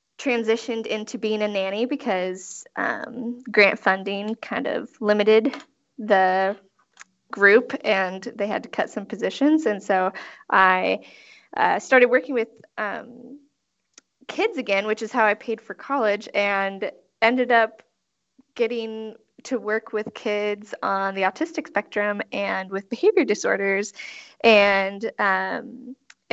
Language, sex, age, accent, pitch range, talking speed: English, female, 10-29, American, 195-255 Hz, 130 wpm